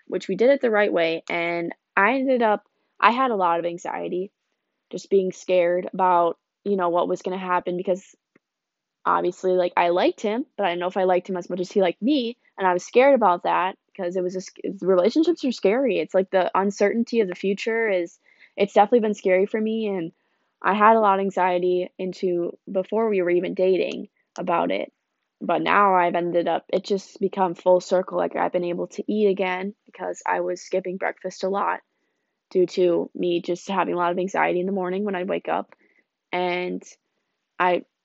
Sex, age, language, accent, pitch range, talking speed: female, 20-39, English, American, 180-200 Hz, 205 wpm